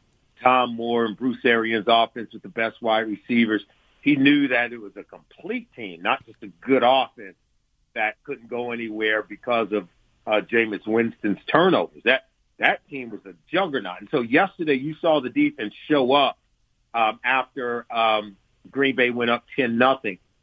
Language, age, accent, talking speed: English, 50-69, American, 170 wpm